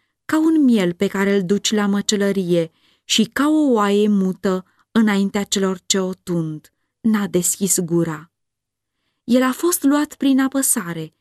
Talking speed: 150 wpm